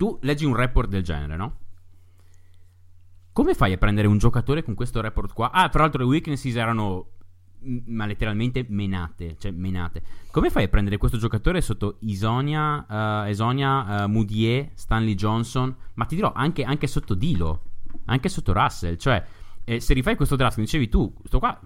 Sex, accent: male, native